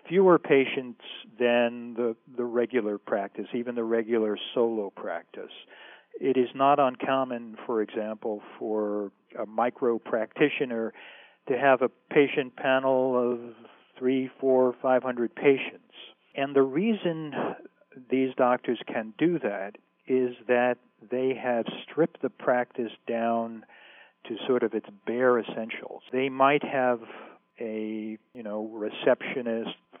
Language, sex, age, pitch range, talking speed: English, male, 50-69, 110-130 Hz, 125 wpm